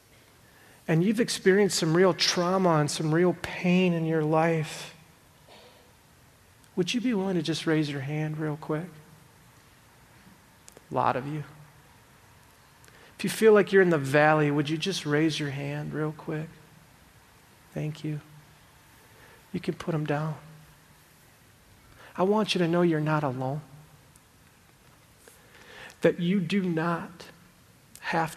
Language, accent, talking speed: English, American, 135 wpm